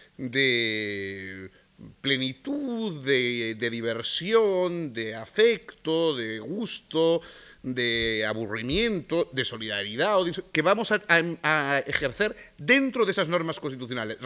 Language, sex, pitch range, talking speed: Spanish, male, 115-165 Hz, 105 wpm